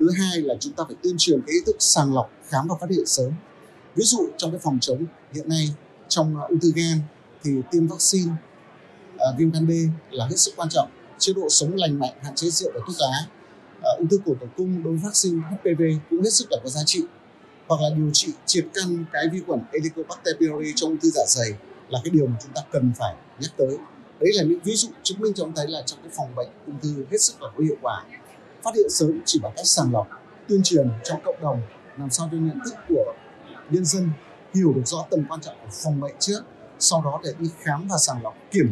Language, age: Vietnamese, 20-39